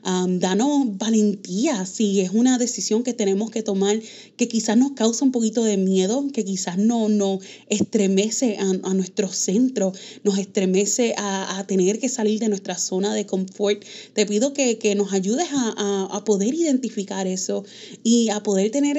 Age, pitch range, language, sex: 20-39, 190-225 Hz, Spanish, female